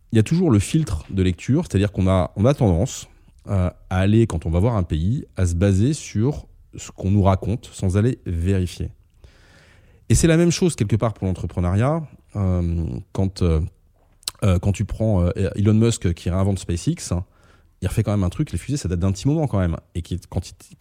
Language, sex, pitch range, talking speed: French, male, 90-120 Hz, 200 wpm